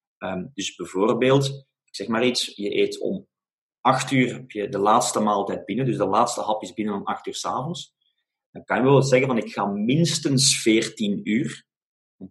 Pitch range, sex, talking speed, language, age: 105-145 Hz, male, 195 wpm, English, 30-49